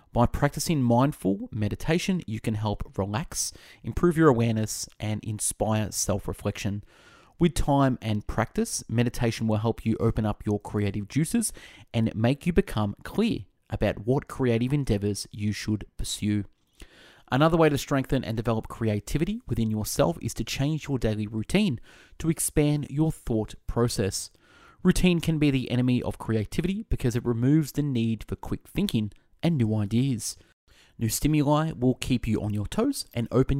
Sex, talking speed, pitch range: male, 155 wpm, 105-140 Hz